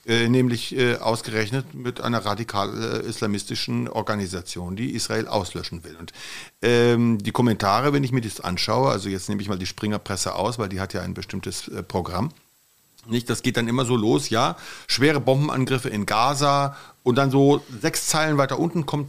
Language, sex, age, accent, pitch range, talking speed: German, male, 50-69, German, 105-135 Hz, 180 wpm